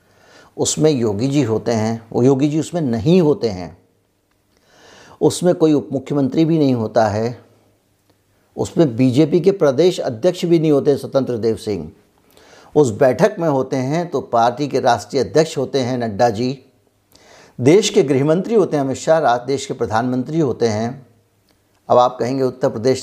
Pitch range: 115-150 Hz